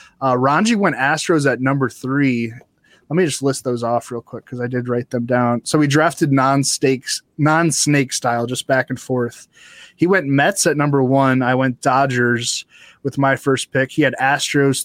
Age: 20-39